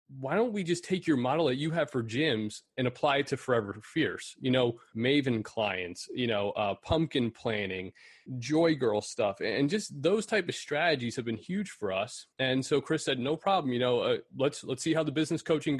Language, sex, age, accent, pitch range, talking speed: English, male, 30-49, American, 120-145 Hz, 215 wpm